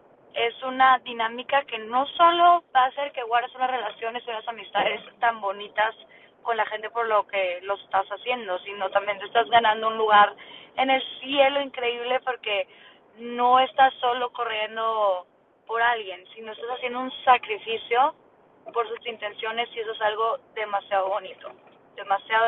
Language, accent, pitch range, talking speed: Spanish, Mexican, 220-275 Hz, 155 wpm